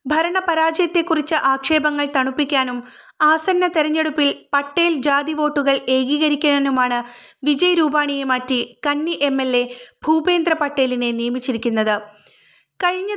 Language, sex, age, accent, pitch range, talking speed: Malayalam, female, 20-39, native, 260-315 Hz, 90 wpm